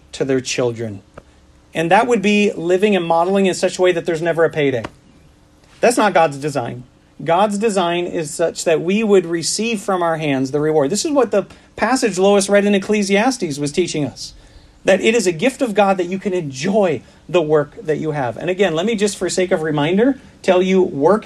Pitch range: 145-195 Hz